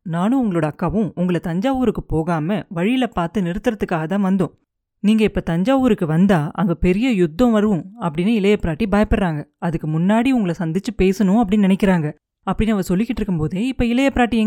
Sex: female